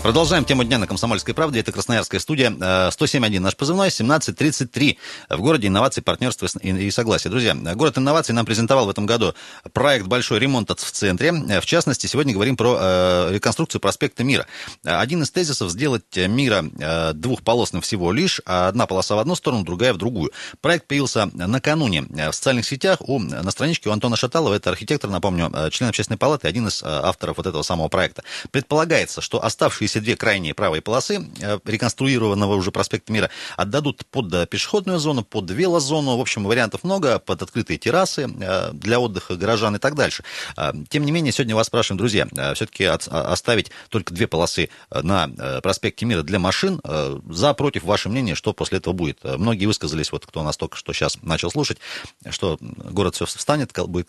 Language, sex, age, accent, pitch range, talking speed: Russian, male, 30-49, native, 95-135 Hz, 170 wpm